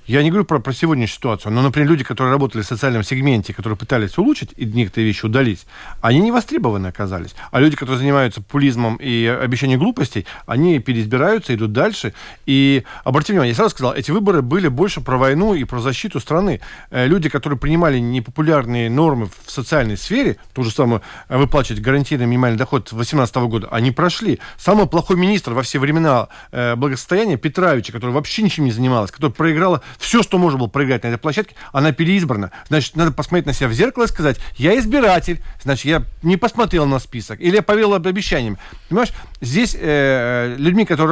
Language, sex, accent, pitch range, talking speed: Russian, male, native, 125-175 Hz, 185 wpm